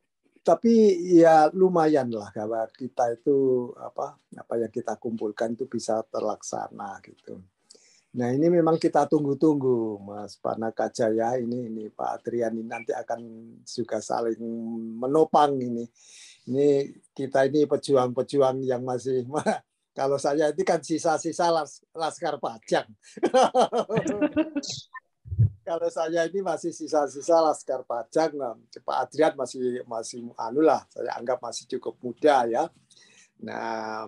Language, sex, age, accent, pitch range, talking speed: Indonesian, male, 50-69, native, 120-165 Hz, 115 wpm